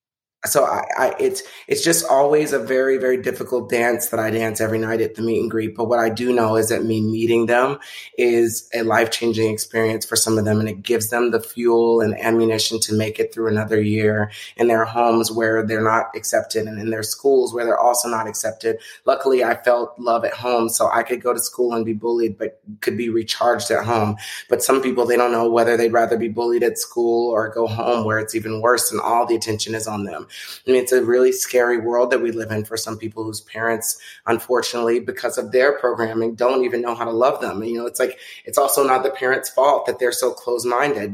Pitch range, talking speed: 110-125 Hz, 230 wpm